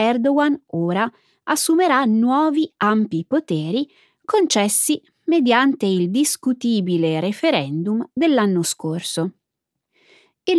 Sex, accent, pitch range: female, native, 180-275 Hz